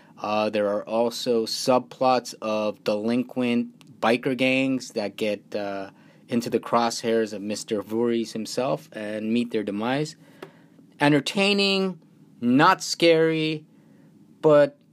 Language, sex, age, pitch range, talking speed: English, male, 30-49, 115-145 Hz, 110 wpm